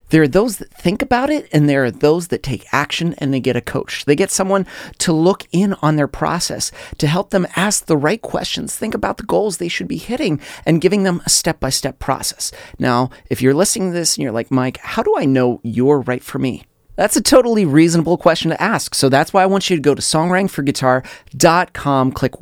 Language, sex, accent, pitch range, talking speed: English, male, American, 135-175 Hz, 230 wpm